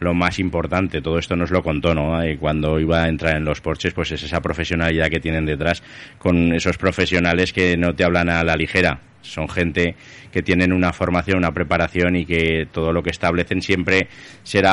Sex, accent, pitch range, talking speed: male, Spanish, 85-95 Hz, 200 wpm